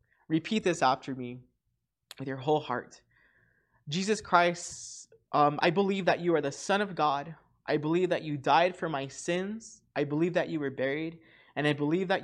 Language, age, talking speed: English, 20-39, 185 wpm